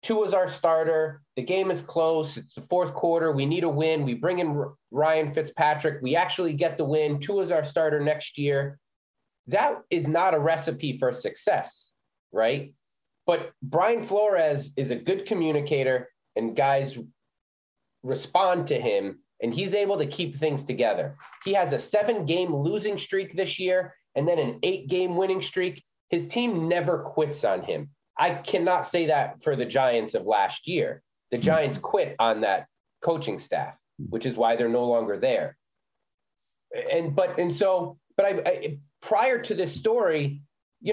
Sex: male